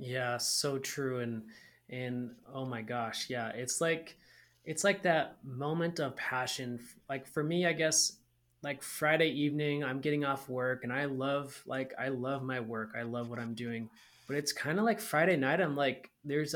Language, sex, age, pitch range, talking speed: English, male, 20-39, 120-150 Hz, 190 wpm